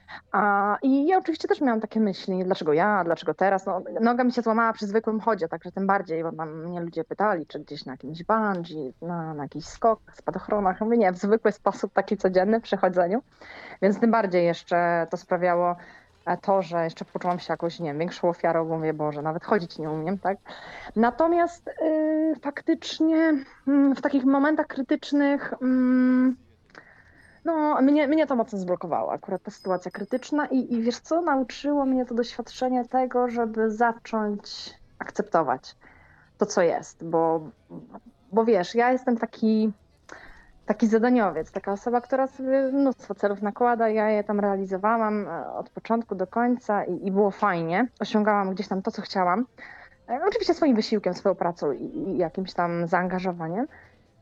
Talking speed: 165 wpm